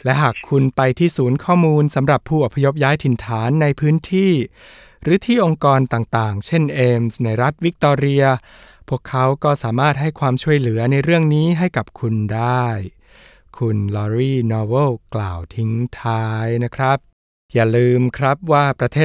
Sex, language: male, Thai